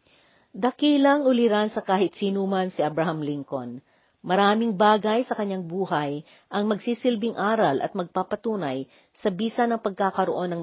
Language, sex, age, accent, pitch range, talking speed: Filipino, female, 50-69, native, 165-215 Hz, 135 wpm